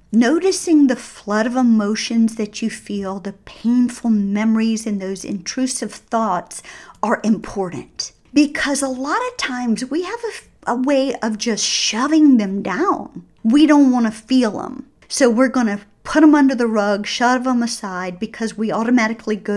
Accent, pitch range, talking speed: American, 215-285 Hz, 165 wpm